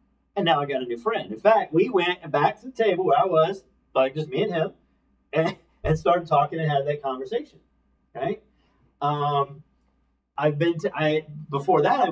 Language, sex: English, male